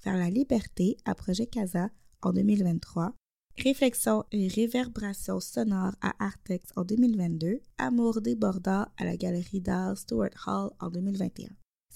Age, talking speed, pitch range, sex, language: 20-39, 125 wpm, 180-220 Hz, female, English